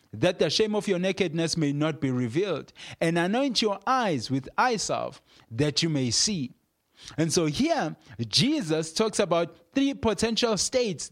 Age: 30-49